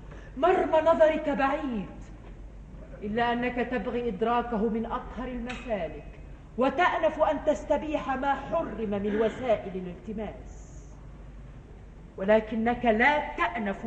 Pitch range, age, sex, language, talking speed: 230-290 Hz, 40-59, female, Arabic, 90 wpm